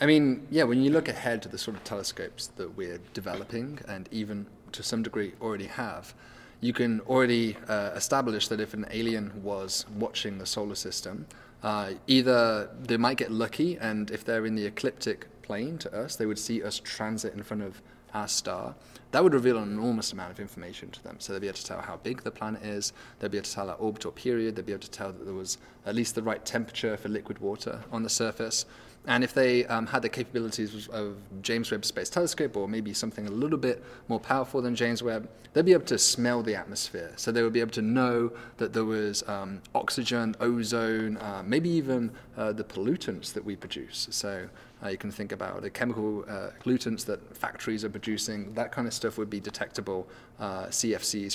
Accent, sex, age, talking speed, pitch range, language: British, male, 30-49, 215 wpm, 105-125 Hz, English